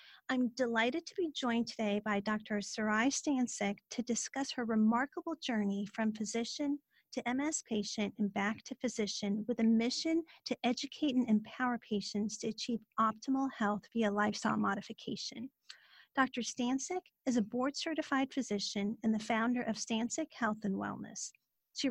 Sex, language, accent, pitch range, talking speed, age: female, English, American, 215-255 Hz, 150 wpm, 40-59